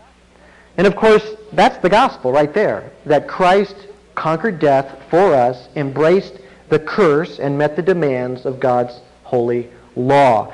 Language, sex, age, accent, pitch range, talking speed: English, male, 50-69, American, 125-185 Hz, 140 wpm